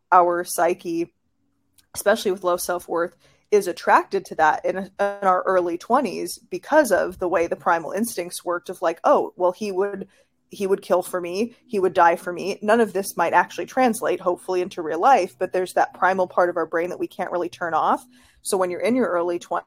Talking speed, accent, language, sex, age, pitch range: 210 wpm, American, English, female, 20-39, 175-205 Hz